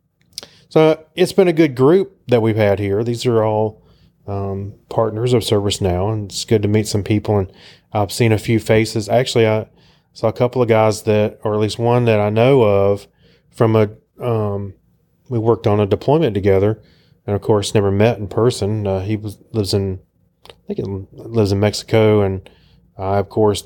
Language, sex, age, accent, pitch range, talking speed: English, male, 30-49, American, 100-120 Hz, 200 wpm